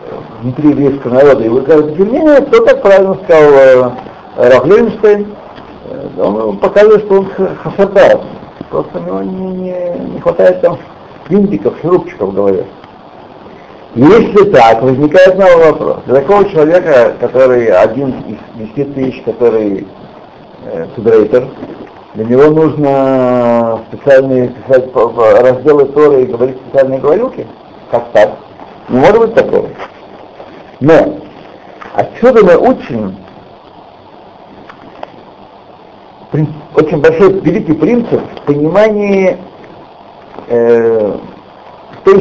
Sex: male